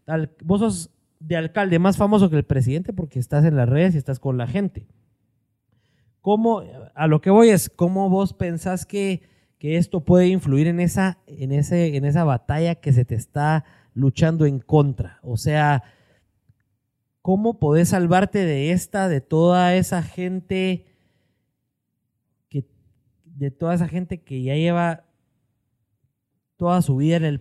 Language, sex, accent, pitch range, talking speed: Spanish, male, Mexican, 130-175 Hz, 160 wpm